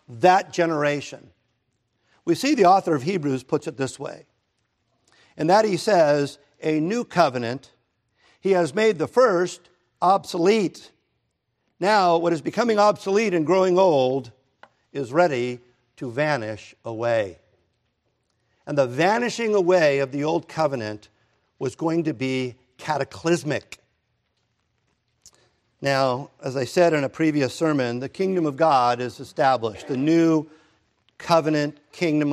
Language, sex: English, male